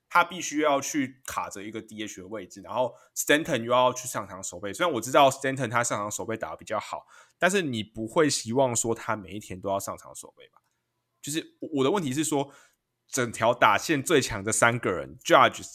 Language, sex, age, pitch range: Chinese, male, 20-39, 110-150 Hz